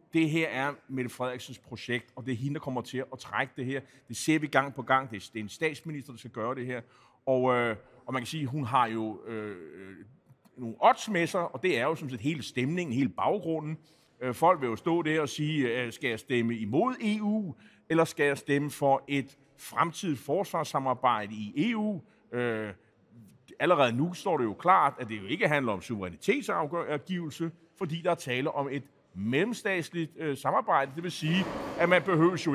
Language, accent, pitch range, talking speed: Danish, native, 125-165 Hz, 195 wpm